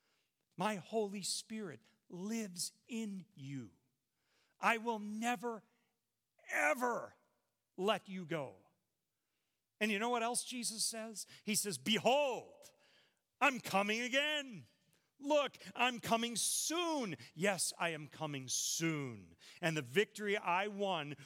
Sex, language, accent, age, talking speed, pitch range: male, English, American, 40-59, 115 wpm, 135-220 Hz